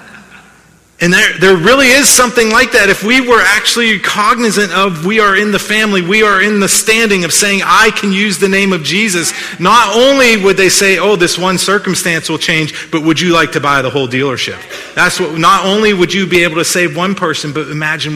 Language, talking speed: English, 220 wpm